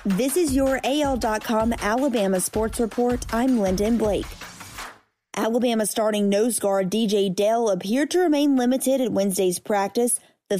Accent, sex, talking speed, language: American, female, 135 wpm, English